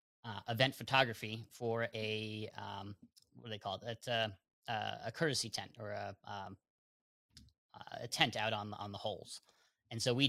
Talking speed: 150 wpm